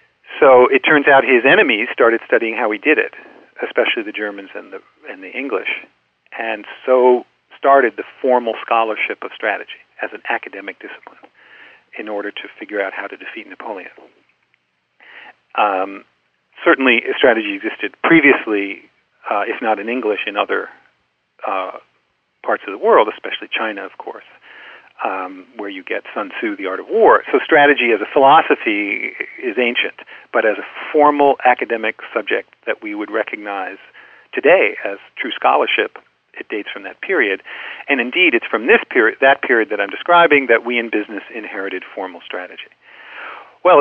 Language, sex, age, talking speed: English, male, 40-59, 160 wpm